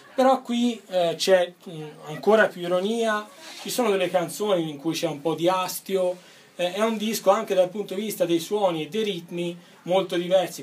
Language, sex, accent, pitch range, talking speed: Italian, male, native, 145-185 Hz, 190 wpm